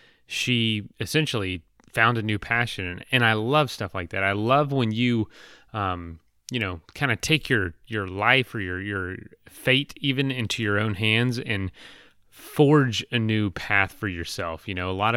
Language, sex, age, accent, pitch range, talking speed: English, male, 30-49, American, 95-120 Hz, 180 wpm